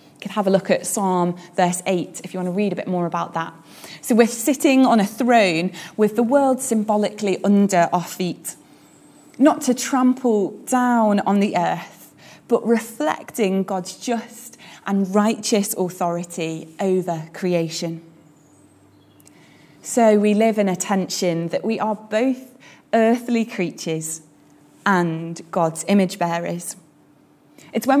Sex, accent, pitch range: female, British, 175-225 Hz